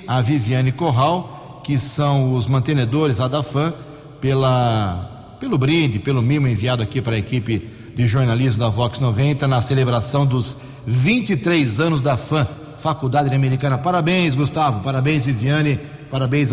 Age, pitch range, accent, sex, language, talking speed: 60-79, 130-150 Hz, Brazilian, male, Portuguese, 130 wpm